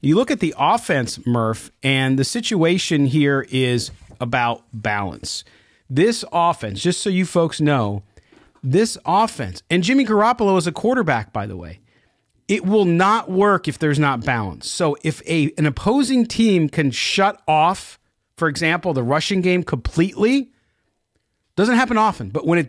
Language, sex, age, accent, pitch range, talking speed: English, male, 40-59, American, 130-180 Hz, 160 wpm